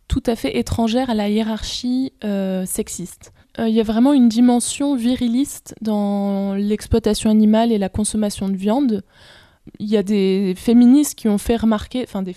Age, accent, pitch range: 20-39, French, 200-240 Hz